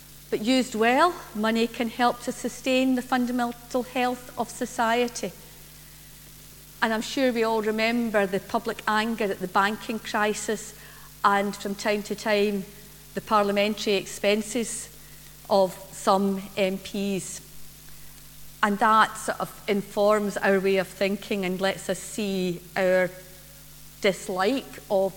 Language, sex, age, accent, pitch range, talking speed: English, female, 50-69, British, 190-225 Hz, 125 wpm